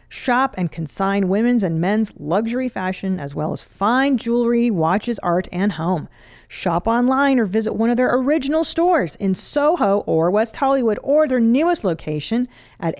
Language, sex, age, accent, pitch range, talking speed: English, female, 40-59, American, 175-245 Hz, 165 wpm